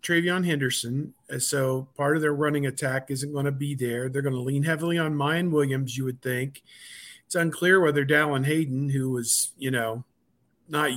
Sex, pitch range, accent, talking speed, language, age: male, 130-155 Hz, American, 185 wpm, English, 50-69